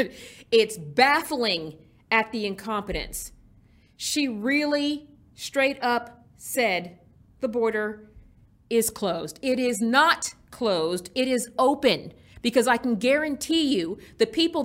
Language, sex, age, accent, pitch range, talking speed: English, female, 40-59, American, 215-265 Hz, 115 wpm